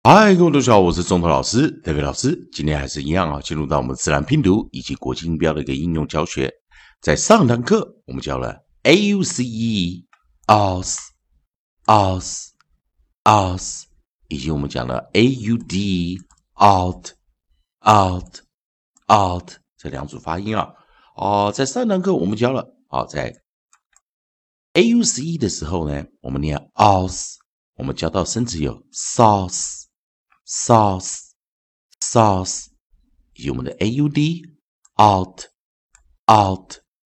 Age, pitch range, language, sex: 50-69, 75-115 Hz, Chinese, male